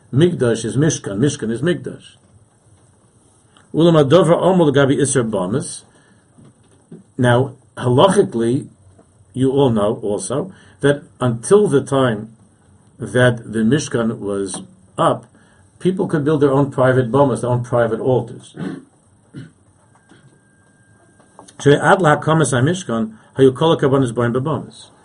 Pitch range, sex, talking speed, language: 115-145 Hz, male, 75 wpm, English